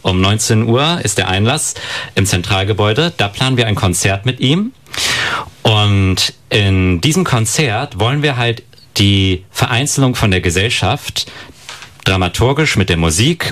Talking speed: 140 wpm